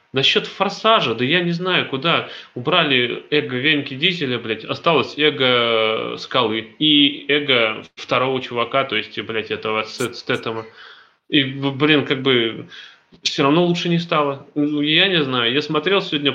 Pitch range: 125-160 Hz